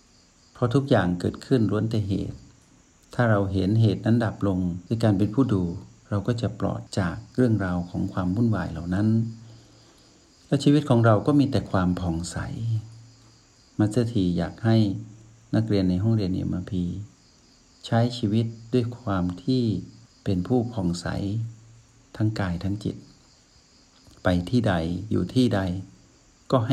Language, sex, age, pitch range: Thai, male, 60-79, 95-115 Hz